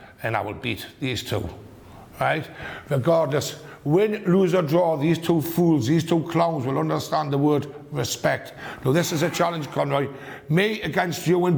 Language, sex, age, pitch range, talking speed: English, male, 60-79, 130-175 Hz, 170 wpm